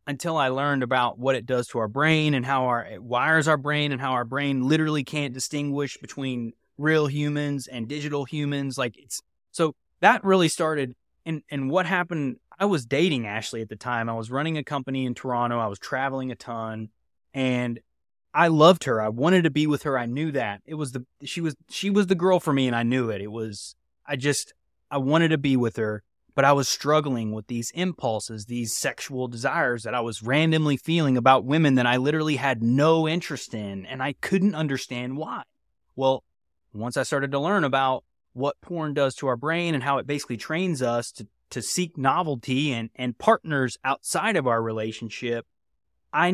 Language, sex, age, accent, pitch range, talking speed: English, male, 20-39, American, 120-150 Hz, 205 wpm